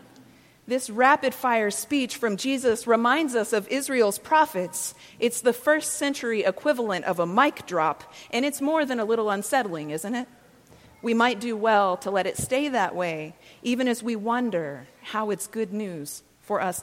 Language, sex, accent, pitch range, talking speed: English, female, American, 190-245 Hz, 170 wpm